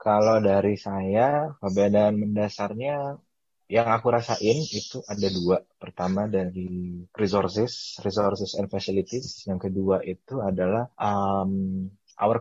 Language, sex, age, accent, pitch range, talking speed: Indonesian, male, 20-39, native, 95-110 Hz, 110 wpm